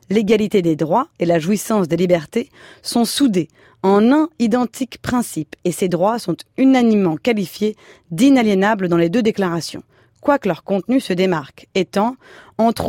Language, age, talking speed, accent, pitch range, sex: French, 30-49, 150 wpm, French, 170-235 Hz, female